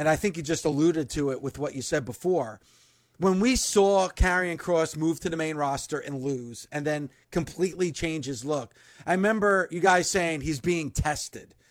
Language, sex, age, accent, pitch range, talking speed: English, male, 30-49, American, 170-215 Hz, 200 wpm